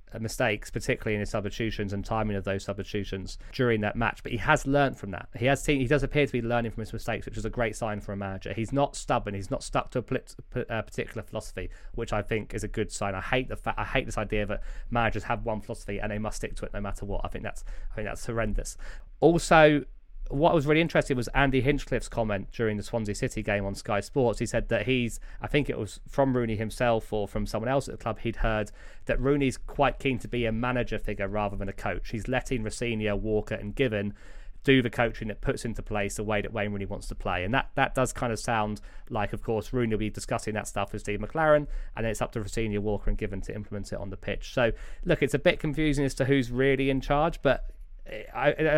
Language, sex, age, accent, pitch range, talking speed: English, male, 20-39, British, 105-130 Hz, 250 wpm